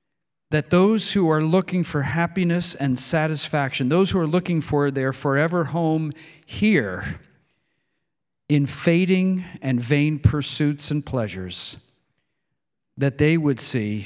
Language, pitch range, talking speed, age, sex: English, 125-160 Hz, 125 wpm, 50-69, male